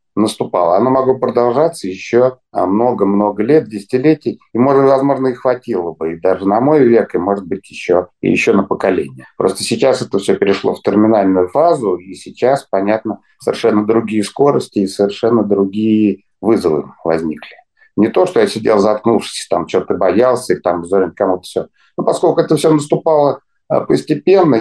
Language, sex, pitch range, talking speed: Russian, male, 100-130 Hz, 160 wpm